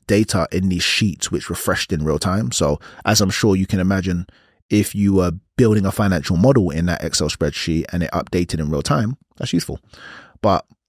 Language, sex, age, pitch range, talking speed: English, male, 30-49, 95-155 Hz, 200 wpm